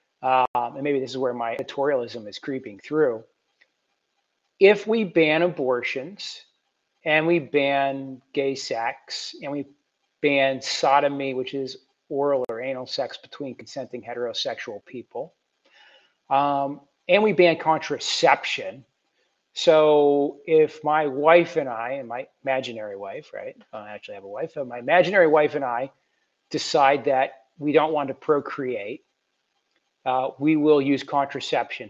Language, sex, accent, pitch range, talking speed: English, male, American, 135-165 Hz, 140 wpm